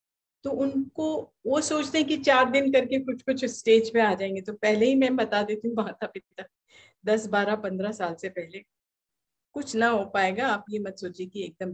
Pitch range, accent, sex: 190-255 Hz, native, female